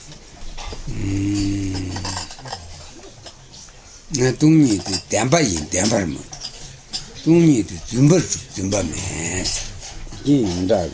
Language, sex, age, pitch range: Italian, male, 60-79, 90-115 Hz